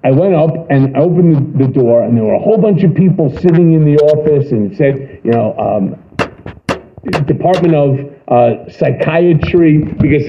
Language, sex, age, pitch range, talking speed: English, male, 50-69, 130-165 Hz, 175 wpm